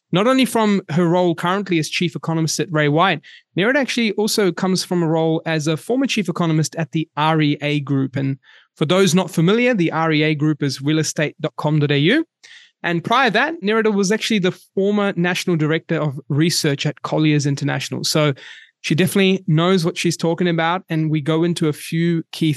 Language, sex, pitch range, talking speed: English, male, 150-180 Hz, 185 wpm